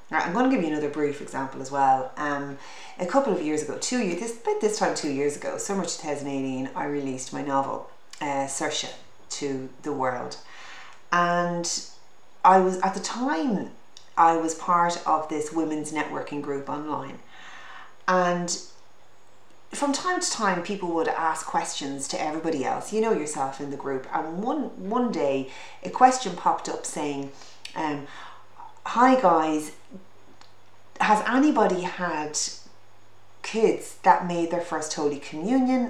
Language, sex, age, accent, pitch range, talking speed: English, female, 30-49, Irish, 140-195 Hz, 155 wpm